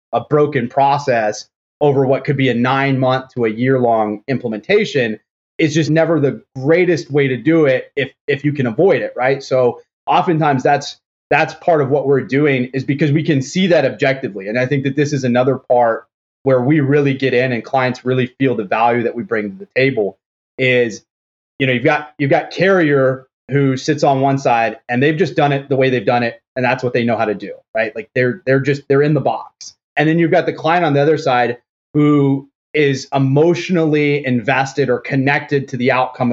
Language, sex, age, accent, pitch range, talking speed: English, male, 30-49, American, 125-150 Hz, 215 wpm